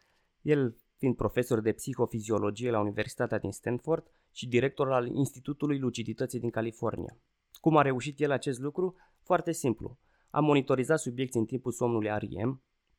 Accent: native